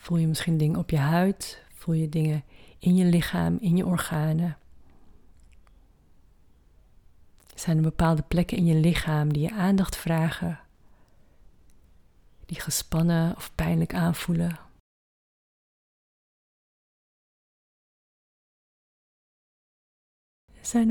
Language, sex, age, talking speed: Dutch, female, 30-49, 95 wpm